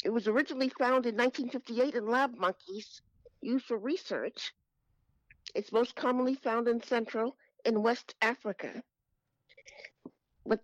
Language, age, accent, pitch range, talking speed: English, 50-69, American, 215-265 Hz, 125 wpm